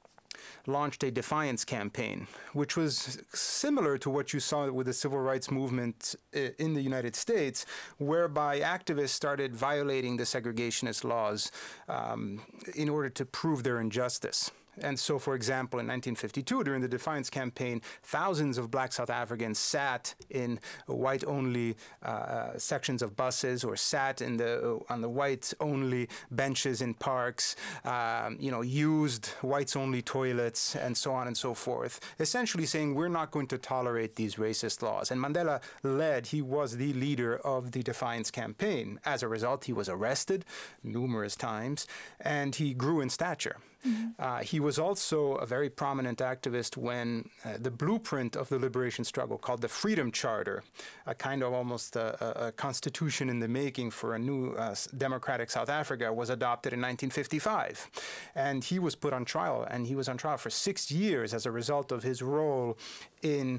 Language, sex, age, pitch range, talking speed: English, male, 30-49, 120-145 Hz, 165 wpm